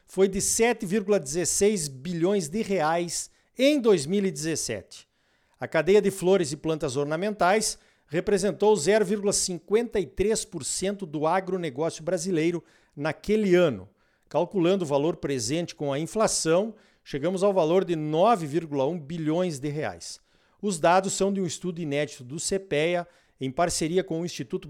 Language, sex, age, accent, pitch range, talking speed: Portuguese, male, 50-69, Brazilian, 160-200 Hz, 125 wpm